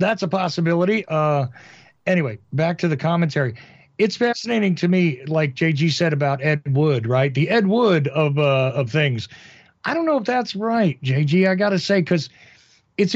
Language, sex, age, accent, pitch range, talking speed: English, male, 50-69, American, 145-185 Hz, 180 wpm